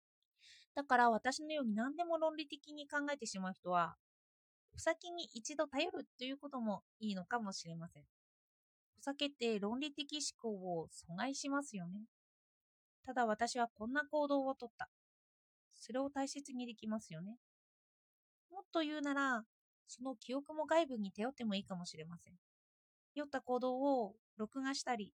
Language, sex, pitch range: Japanese, female, 205-290 Hz